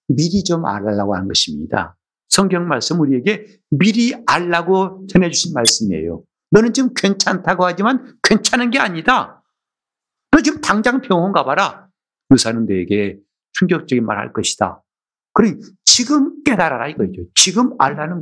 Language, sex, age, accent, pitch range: Korean, male, 50-69, native, 130-205 Hz